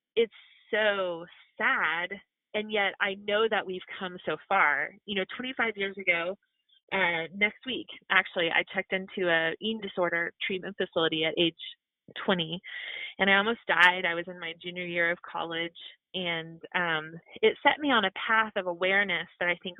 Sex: female